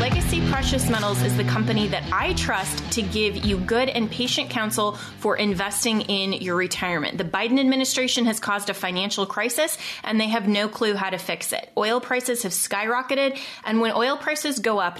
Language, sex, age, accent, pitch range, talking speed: English, female, 20-39, American, 190-245 Hz, 190 wpm